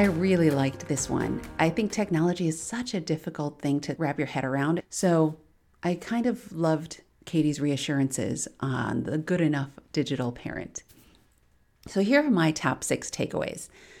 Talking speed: 165 wpm